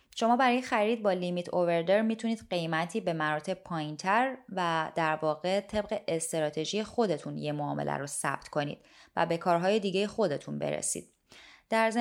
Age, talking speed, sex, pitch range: 20-39, 145 wpm, female, 165-215 Hz